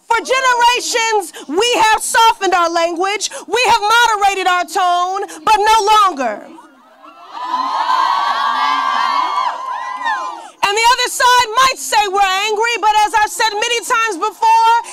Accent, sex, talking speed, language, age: American, female, 120 wpm, English, 30-49